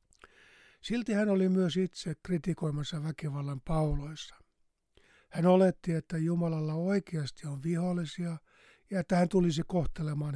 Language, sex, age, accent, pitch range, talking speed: Finnish, male, 60-79, native, 150-180 Hz, 115 wpm